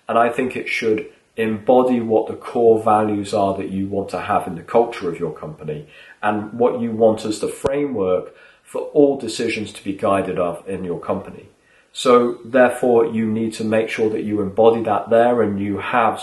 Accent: British